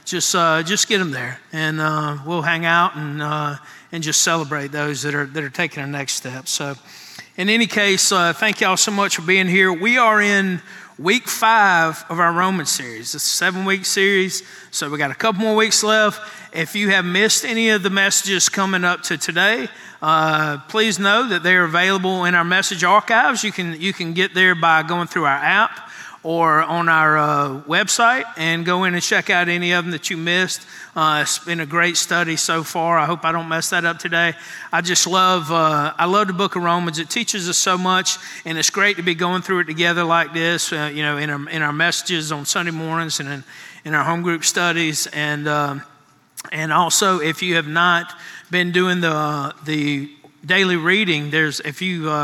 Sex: male